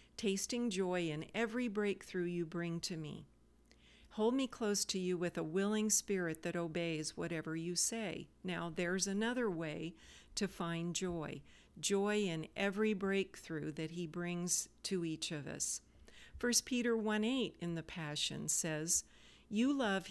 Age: 50-69